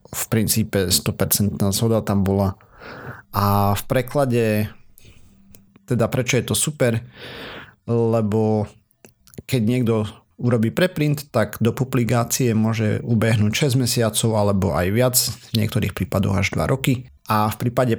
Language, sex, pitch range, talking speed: Slovak, male, 105-120 Hz, 125 wpm